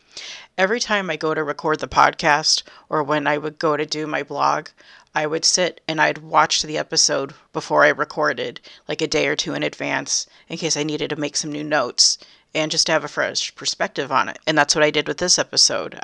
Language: English